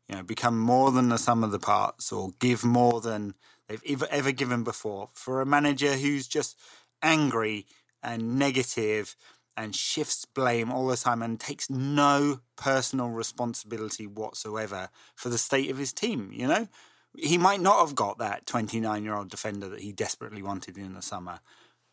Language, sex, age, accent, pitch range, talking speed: English, male, 30-49, British, 110-135 Hz, 165 wpm